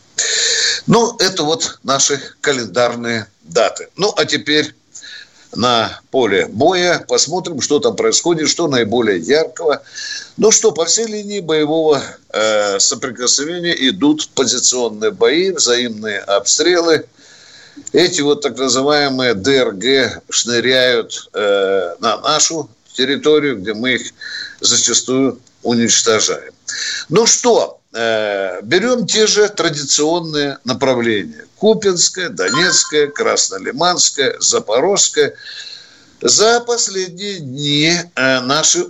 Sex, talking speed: male, 95 wpm